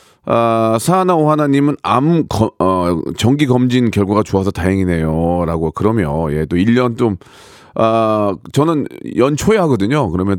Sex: male